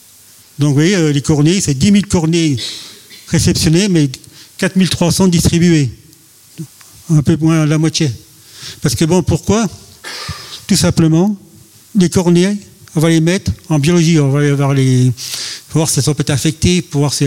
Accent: French